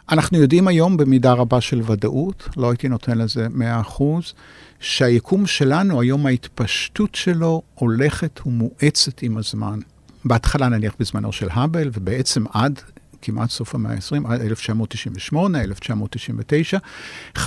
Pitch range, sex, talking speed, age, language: 120-160 Hz, male, 125 wpm, 60-79, Hebrew